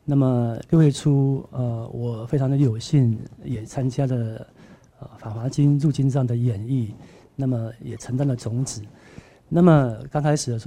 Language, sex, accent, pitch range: Chinese, male, native, 120-140 Hz